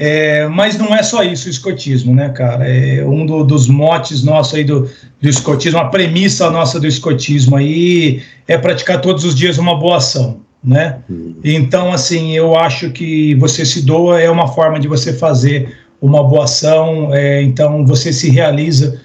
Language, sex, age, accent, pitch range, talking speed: Portuguese, male, 50-69, Brazilian, 140-180 Hz, 170 wpm